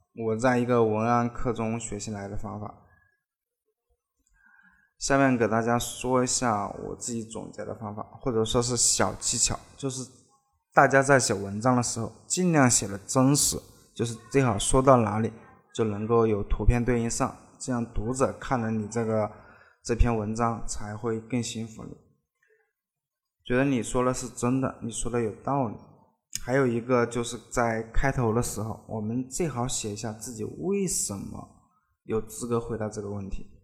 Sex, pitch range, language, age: male, 110-130 Hz, Chinese, 20-39